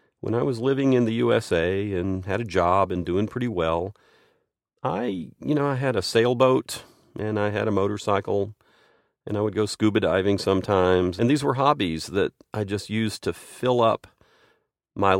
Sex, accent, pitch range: male, American, 90-115 Hz